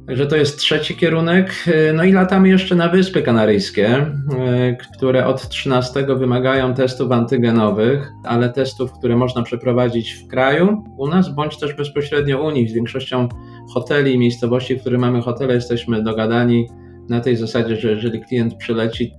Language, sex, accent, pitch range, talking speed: Polish, male, native, 115-135 Hz, 155 wpm